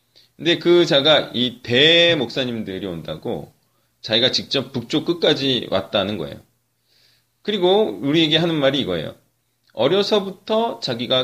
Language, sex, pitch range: Korean, male, 115-155 Hz